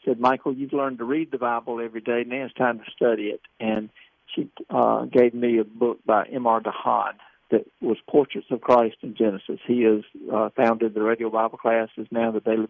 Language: English